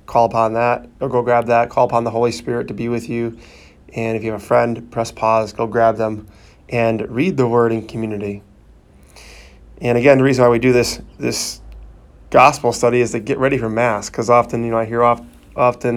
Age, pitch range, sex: 20-39, 105-125 Hz, male